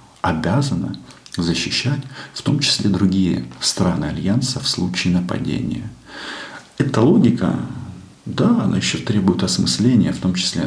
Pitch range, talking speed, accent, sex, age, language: 90-110 Hz, 120 wpm, native, male, 40-59, Russian